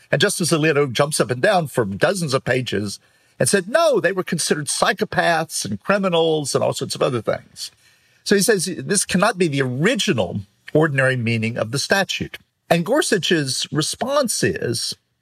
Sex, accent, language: male, American, English